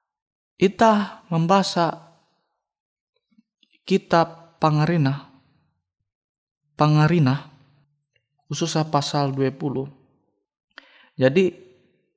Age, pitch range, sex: 20-39, 135-175 Hz, male